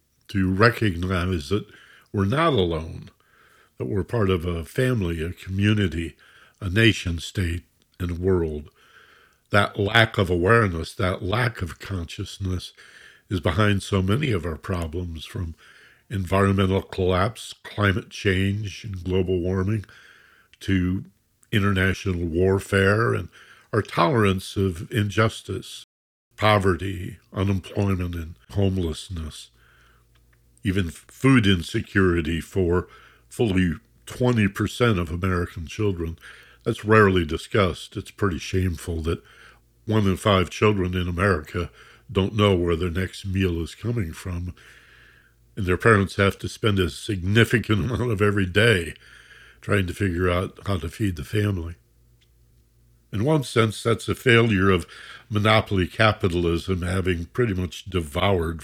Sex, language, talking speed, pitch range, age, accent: male, English, 125 wpm, 85-105 Hz, 60-79, American